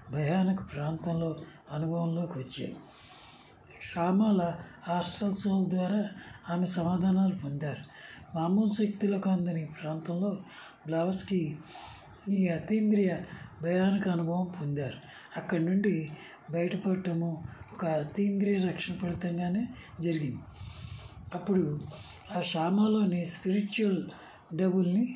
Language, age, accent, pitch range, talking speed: Telugu, 60-79, native, 160-190 Hz, 80 wpm